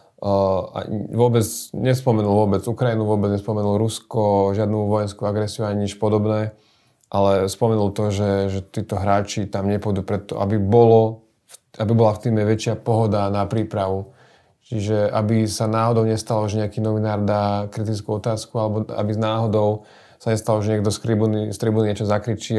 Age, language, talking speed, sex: 30-49, Slovak, 155 wpm, male